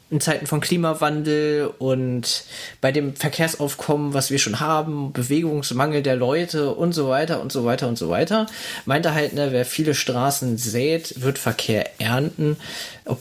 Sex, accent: male, German